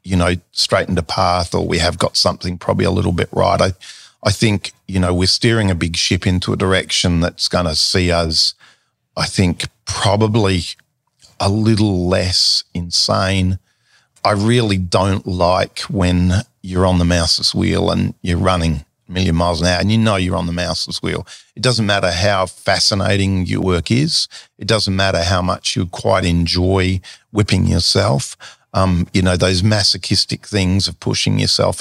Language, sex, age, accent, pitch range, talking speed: English, male, 40-59, Australian, 90-100 Hz, 175 wpm